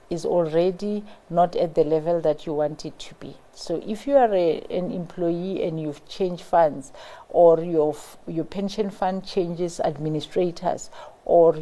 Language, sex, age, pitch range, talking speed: English, female, 50-69, 165-195 Hz, 160 wpm